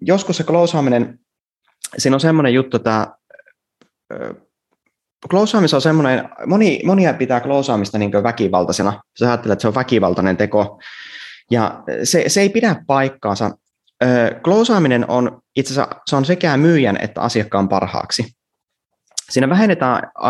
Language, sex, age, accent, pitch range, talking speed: Finnish, male, 20-39, native, 105-140 Hz, 125 wpm